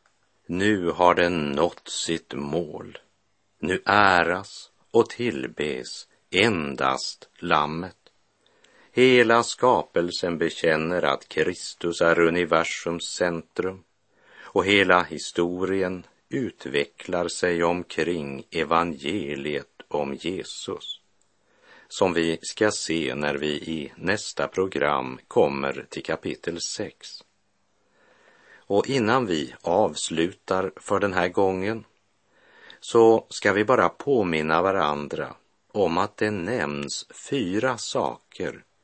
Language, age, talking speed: Swedish, 50-69, 95 wpm